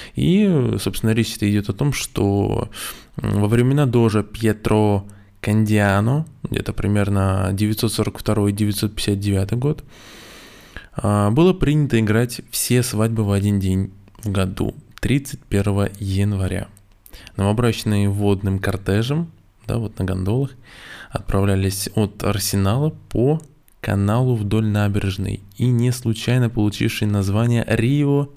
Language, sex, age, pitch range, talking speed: Russian, male, 20-39, 100-120 Hz, 100 wpm